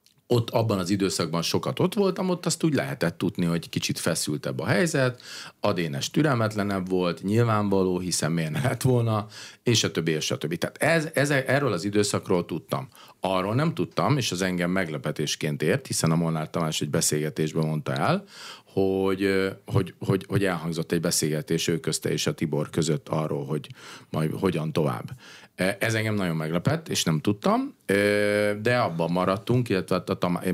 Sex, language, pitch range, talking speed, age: male, Hungarian, 80-105 Hz, 165 wpm, 40-59